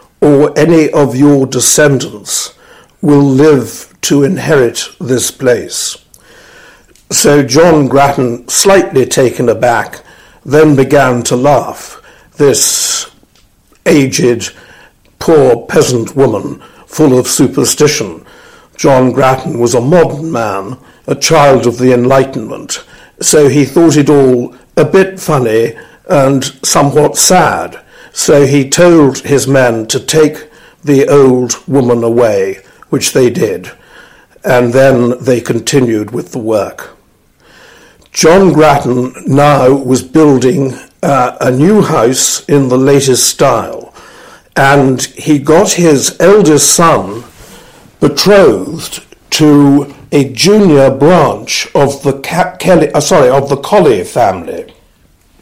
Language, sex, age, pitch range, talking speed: English, male, 60-79, 125-150 Hz, 115 wpm